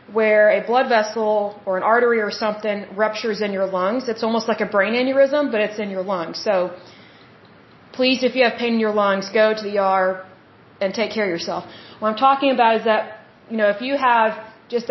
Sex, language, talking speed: female, Hindi, 215 wpm